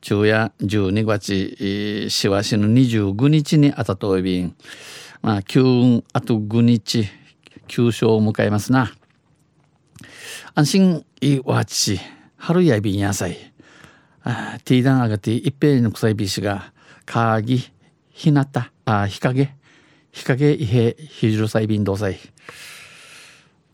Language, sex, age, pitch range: Japanese, male, 50-69, 100-140 Hz